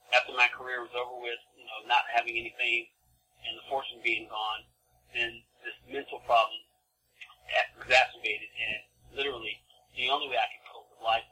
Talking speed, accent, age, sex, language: 165 wpm, American, 40-59, male, English